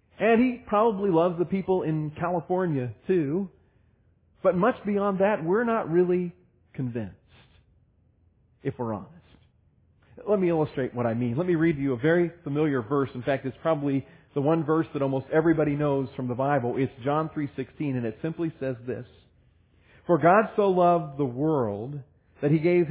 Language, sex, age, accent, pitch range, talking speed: English, male, 40-59, American, 130-175 Hz, 175 wpm